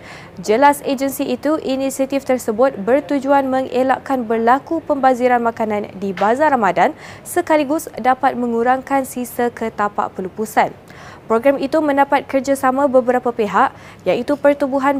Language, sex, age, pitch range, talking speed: Malay, female, 20-39, 235-280 Hz, 110 wpm